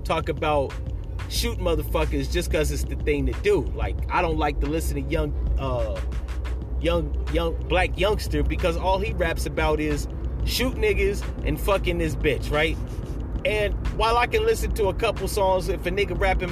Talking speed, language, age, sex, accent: 180 wpm, English, 30-49, male, American